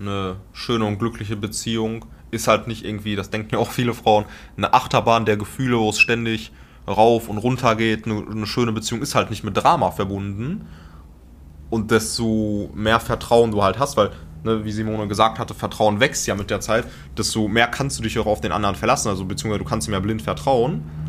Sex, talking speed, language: male, 210 wpm, German